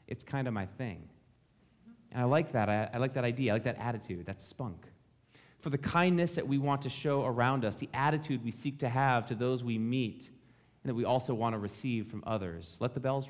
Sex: male